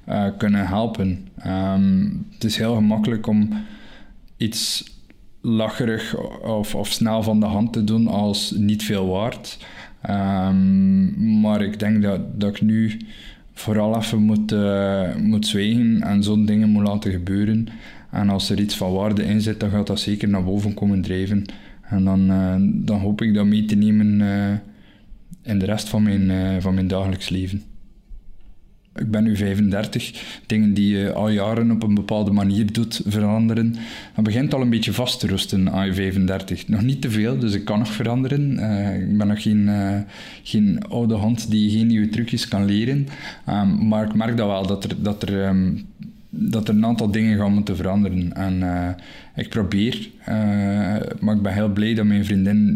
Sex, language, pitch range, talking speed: male, Dutch, 100-110 Hz, 180 wpm